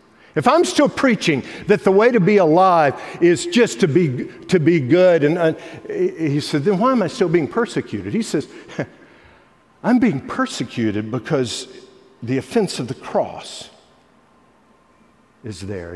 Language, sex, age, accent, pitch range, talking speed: English, male, 50-69, American, 135-185 Hz, 155 wpm